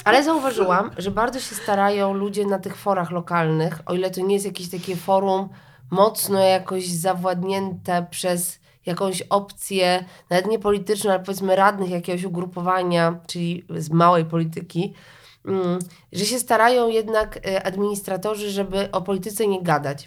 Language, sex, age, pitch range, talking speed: Polish, female, 20-39, 175-200 Hz, 140 wpm